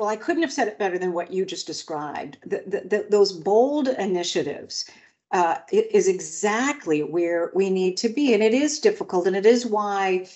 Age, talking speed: 50-69, 205 wpm